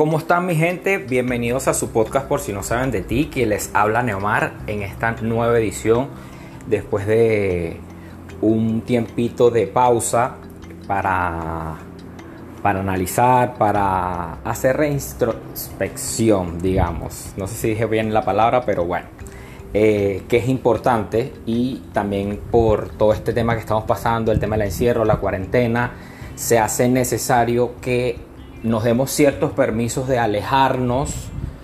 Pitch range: 100-125 Hz